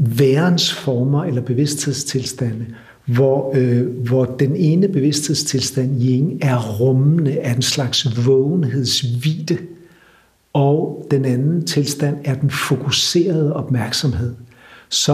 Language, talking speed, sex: Danish, 105 wpm, male